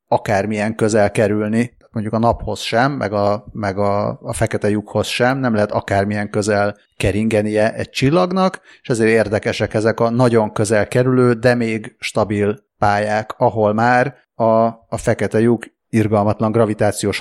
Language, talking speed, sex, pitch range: Hungarian, 145 wpm, male, 105-125 Hz